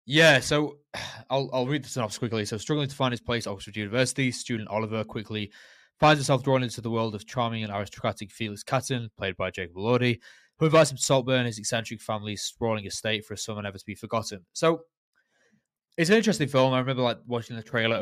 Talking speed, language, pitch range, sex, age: 210 wpm, English, 105-135 Hz, male, 20-39